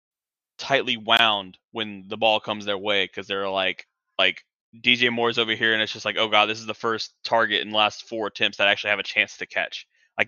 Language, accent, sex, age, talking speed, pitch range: English, American, male, 20-39, 240 wpm, 100-115 Hz